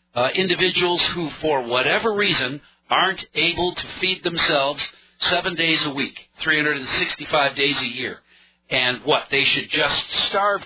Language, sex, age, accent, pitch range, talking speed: English, male, 50-69, American, 130-180 Hz, 140 wpm